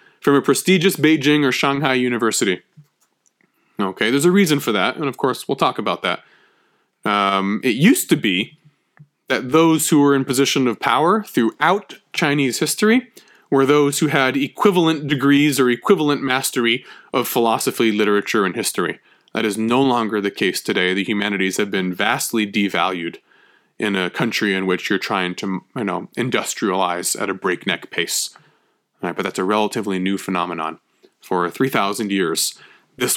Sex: male